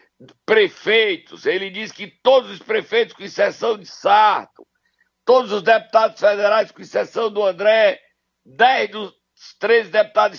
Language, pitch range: Portuguese, 190-310 Hz